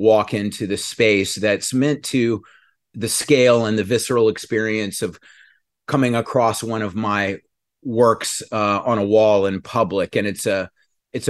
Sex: male